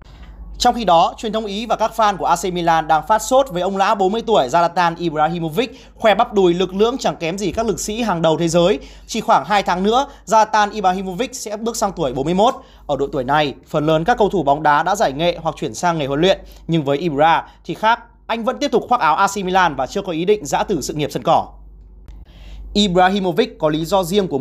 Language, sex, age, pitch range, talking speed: Vietnamese, male, 20-39, 155-205 Hz, 245 wpm